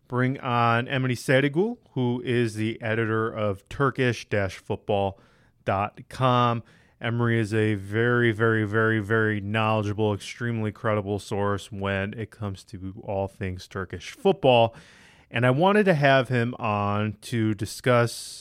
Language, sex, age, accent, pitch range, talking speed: English, male, 30-49, American, 105-125 Hz, 125 wpm